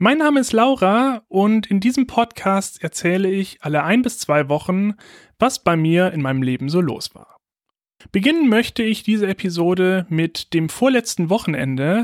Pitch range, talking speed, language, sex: 160-215 Hz, 165 wpm, German, male